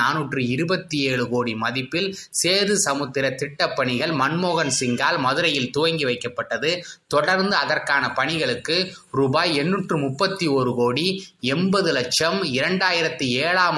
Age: 20-39